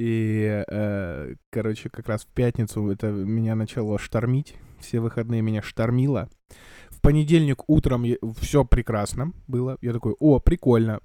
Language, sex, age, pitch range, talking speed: Russian, male, 20-39, 110-130 Hz, 130 wpm